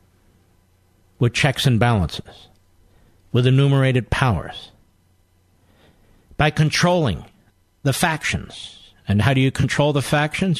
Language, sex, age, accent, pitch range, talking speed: English, male, 50-69, American, 95-130 Hz, 100 wpm